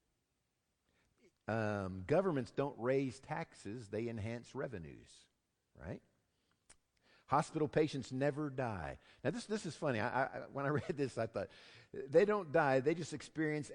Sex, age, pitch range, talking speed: male, 50-69, 110-155 Hz, 140 wpm